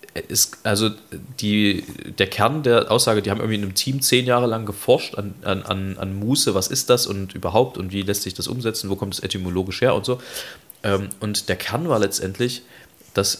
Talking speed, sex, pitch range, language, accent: 200 wpm, male, 95-115 Hz, German, German